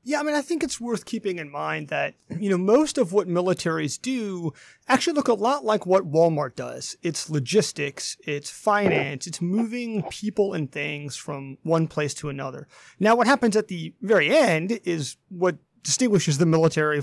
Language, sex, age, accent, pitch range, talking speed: English, male, 30-49, American, 155-230 Hz, 185 wpm